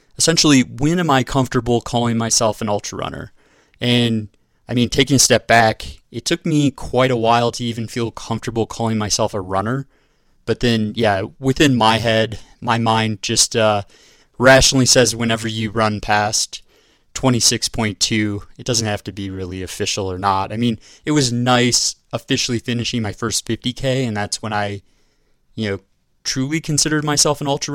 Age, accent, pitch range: 20-39, American, 105-125 Hz